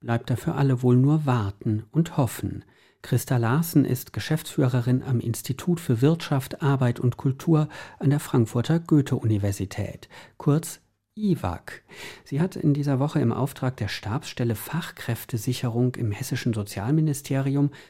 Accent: German